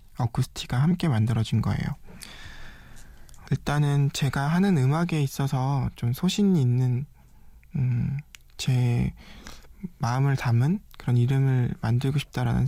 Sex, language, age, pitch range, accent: male, Korean, 20-39, 120-150 Hz, native